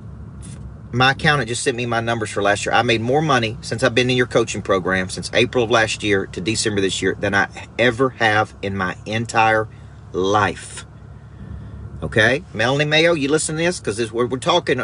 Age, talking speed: 40-59, 200 wpm